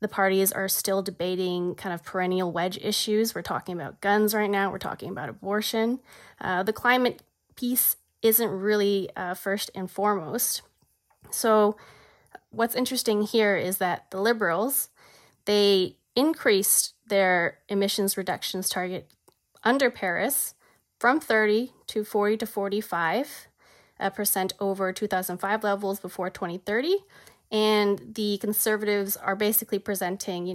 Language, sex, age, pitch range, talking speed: English, female, 20-39, 185-220 Hz, 130 wpm